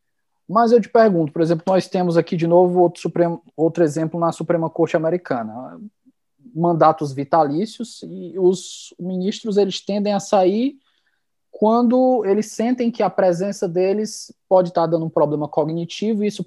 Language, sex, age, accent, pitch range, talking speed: Portuguese, male, 20-39, Brazilian, 165-205 Hz, 155 wpm